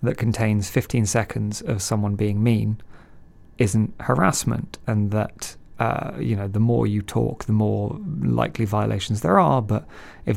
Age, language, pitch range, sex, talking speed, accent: 30-49, English, 105-125 Hz, male, 155 wpm, British